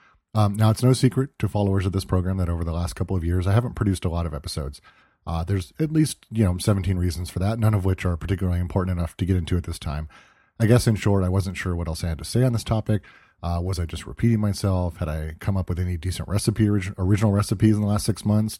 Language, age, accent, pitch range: English, 30-49, American, 85-110 Hz